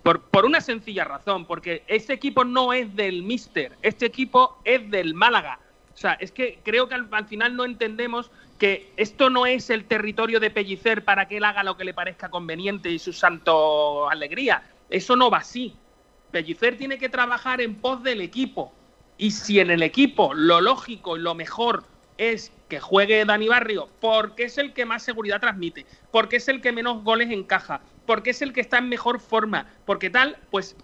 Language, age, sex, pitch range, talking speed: Spanish, 40-59, male, 185-255 Hz, 195 wpm